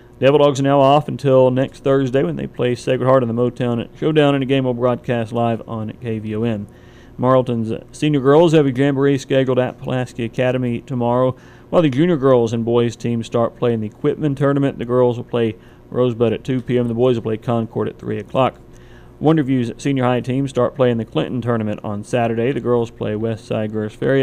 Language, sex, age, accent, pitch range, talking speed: English, male, 40-59, American, 115-135 Hz, 205 wpm